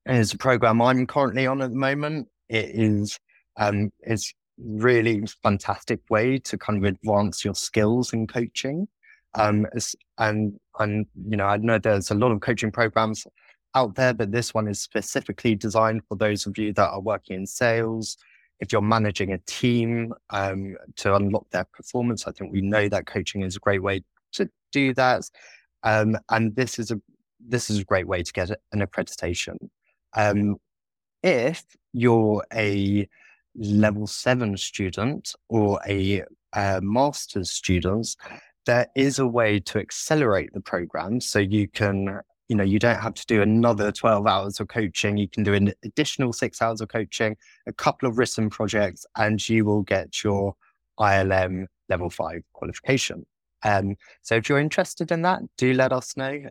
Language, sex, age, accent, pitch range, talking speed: English, male, 20-39, British, 100-120 Hz, 170 wpm